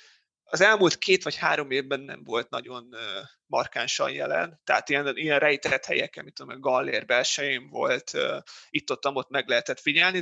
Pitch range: 145-180 Hz